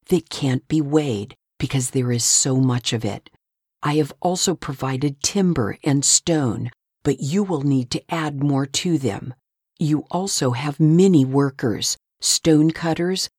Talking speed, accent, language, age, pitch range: 150 wpm, American, English, 50-69, 130-170 Hz